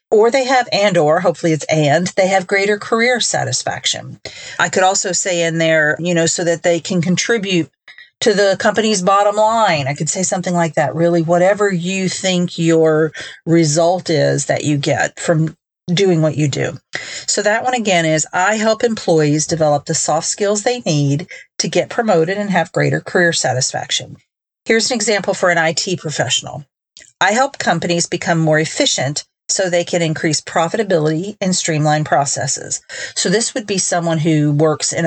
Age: 40-59